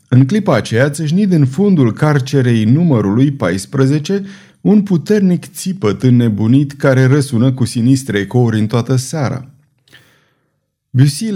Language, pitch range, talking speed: Romanian, 120-150 Hz, 115 wpm